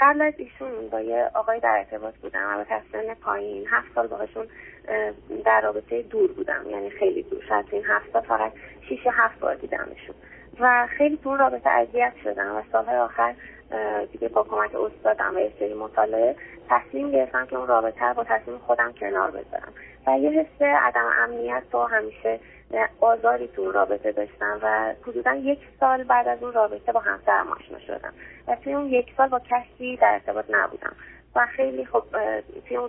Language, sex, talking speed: Persian, female, 165 wpm